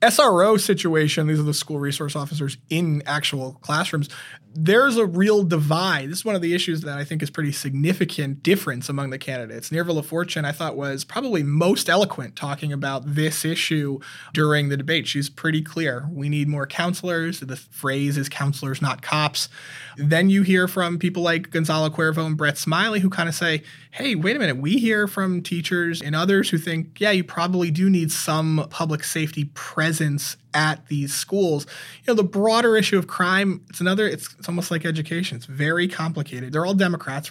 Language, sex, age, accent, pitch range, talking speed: English, male, 20-39, American, 145-175 Hz, 190 wpm